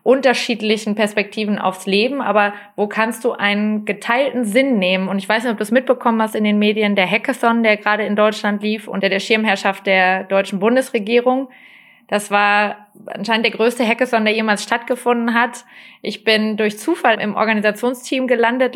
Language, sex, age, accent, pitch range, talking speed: German, female, 20-39, German, 210-240 Hz, 175 wpm